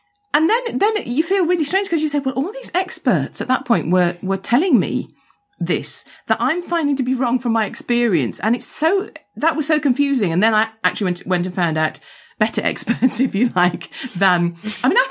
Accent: British